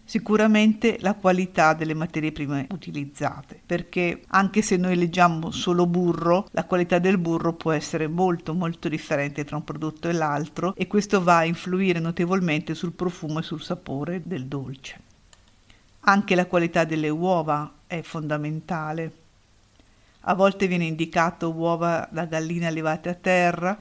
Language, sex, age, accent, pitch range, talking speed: Italian, female, 50-69, native, 150-180 Hz, 145 wpm